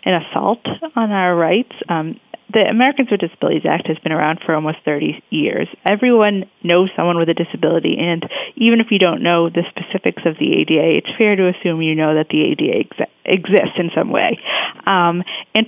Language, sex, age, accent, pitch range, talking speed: English, female, 30-49, American, 165-205 Hz, 190 wpm